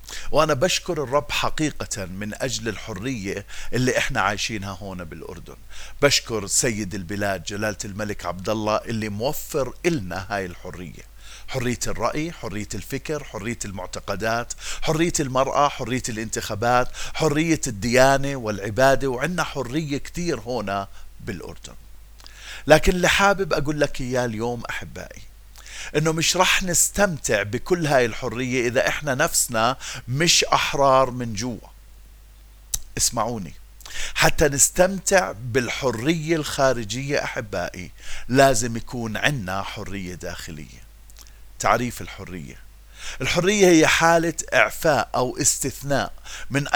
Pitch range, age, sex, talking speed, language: 105-150 Hz, 50-69, male, 110 wpm, Arabic